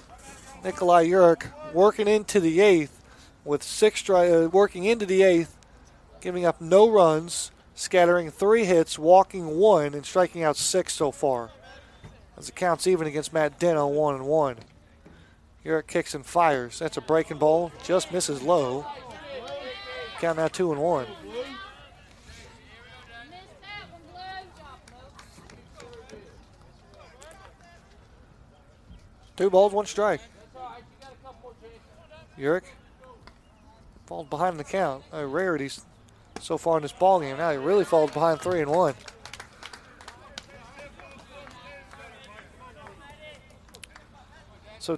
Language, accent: English, American